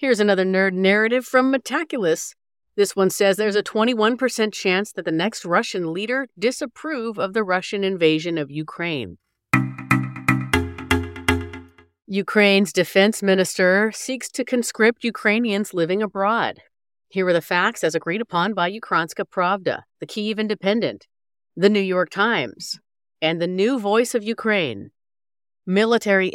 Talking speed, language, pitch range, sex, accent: 130 wpm, English, 165-220 Hz, female, American